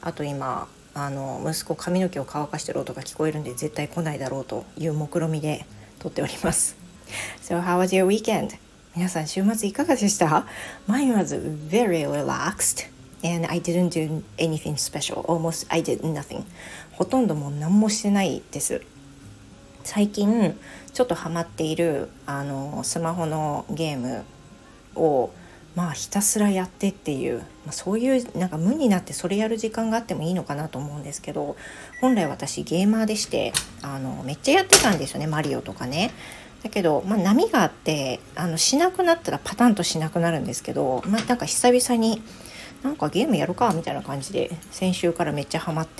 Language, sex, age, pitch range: Japanese, female, 40-59, 145-200 Hz